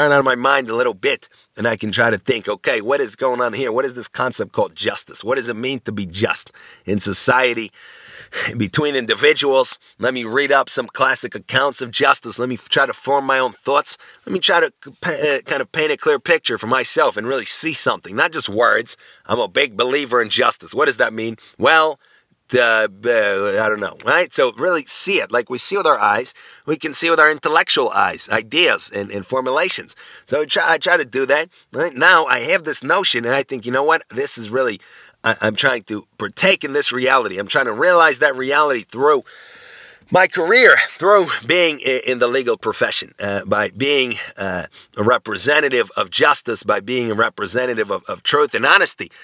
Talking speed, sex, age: 210 wpm, male, 30-49